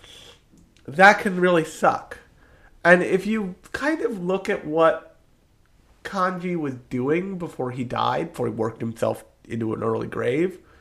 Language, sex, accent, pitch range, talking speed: English, male, American, 120-180 Hz, 145 wpm